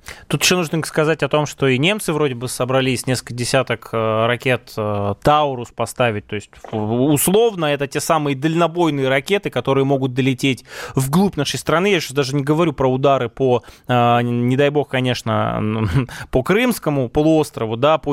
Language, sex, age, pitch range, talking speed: Russian, male, 20-39, 130-175 Hz, 160 wpm